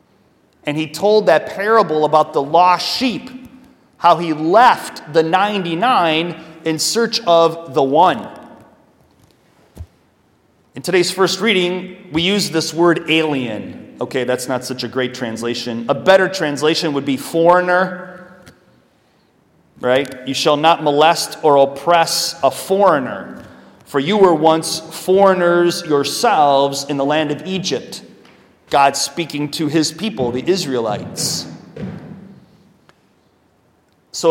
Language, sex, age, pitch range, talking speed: English, male, 30-49, 140-180 Hz, 120 wpm